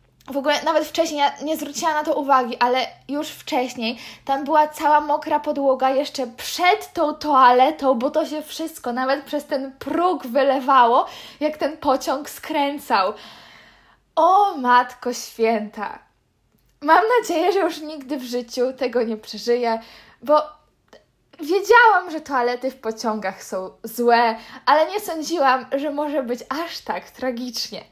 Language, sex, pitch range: Polish, female, 245-310 Hz